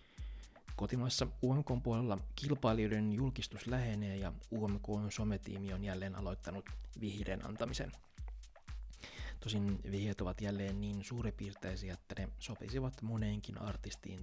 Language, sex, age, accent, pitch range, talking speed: Finnish, male, 20-39, native, 95-110 Hz, 100 wpm